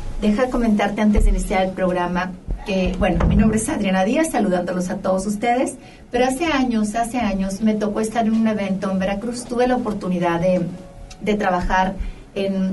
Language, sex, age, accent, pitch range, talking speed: Spanish, female, 40-59, Mexican, 180-225 Hz, 180 wpm